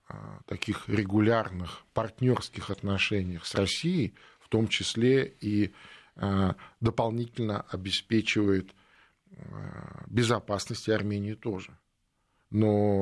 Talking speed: 75 wpm